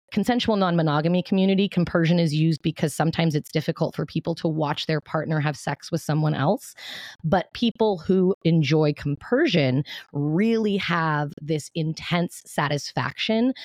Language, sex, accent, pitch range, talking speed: English, female, American, 150-180 Hz, 140 wpm